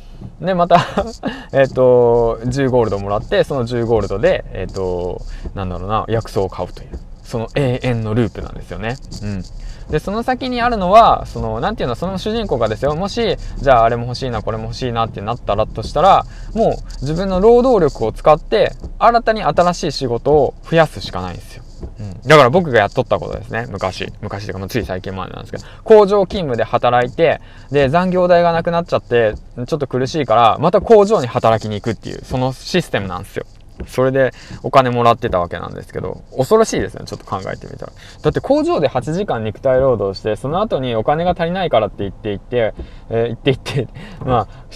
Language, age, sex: Japanese, 20-39, male